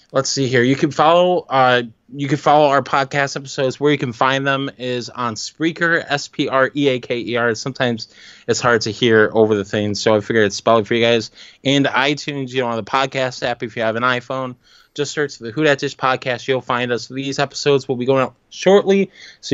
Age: 20-39